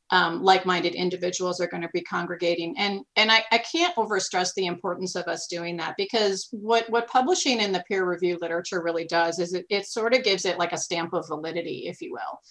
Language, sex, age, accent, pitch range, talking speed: English, female, 40-59, American, 170-195 Hz, 220 wpm